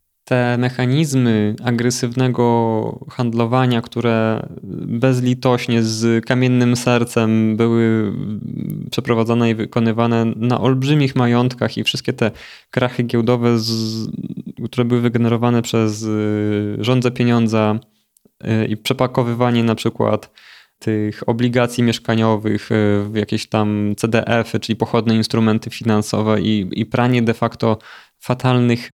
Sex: male